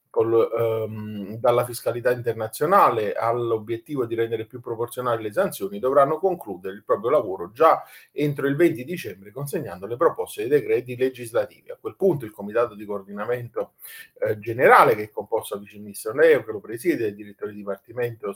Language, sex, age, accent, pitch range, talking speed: Italian, male, 40-59, native, 110-155 Hz, 165 wpm